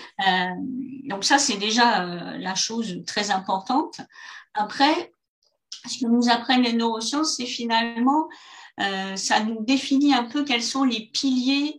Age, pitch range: 50-69, 200-260 Hz